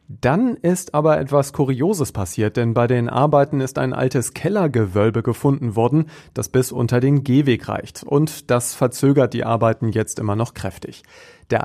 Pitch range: 115-145 Hz